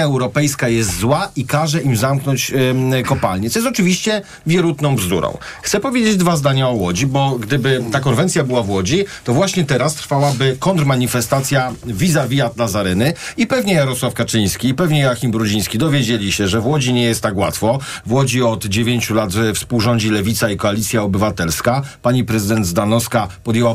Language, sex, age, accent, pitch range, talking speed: Polish, male, 40-59, native, 115-140 Hz, 165 wpm